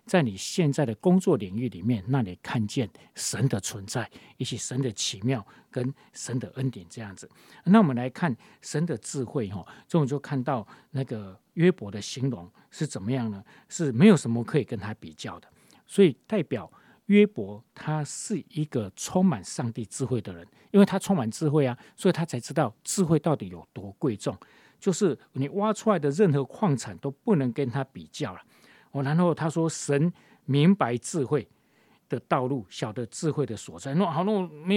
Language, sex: Chinese, male